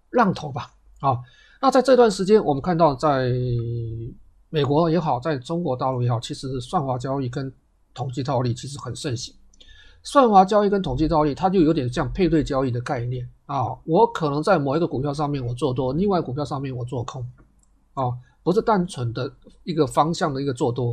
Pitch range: 125-175 Hz